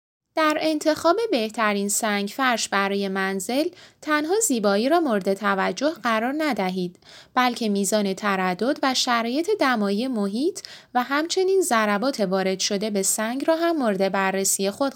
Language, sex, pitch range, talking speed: Persian, female, 200-275 Hz, 130 wpm